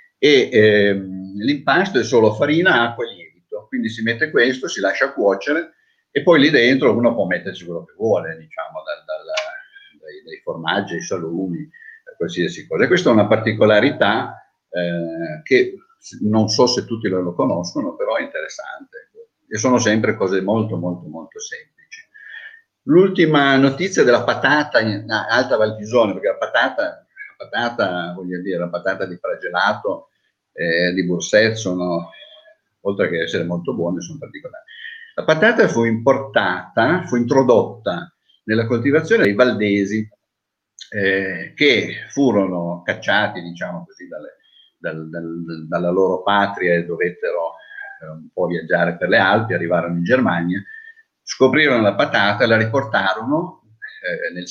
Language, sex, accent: Italian, male, native